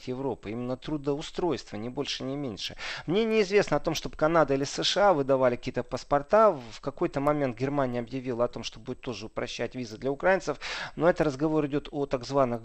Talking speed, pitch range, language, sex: 185 wpm, 130-165 Hz, Russian, male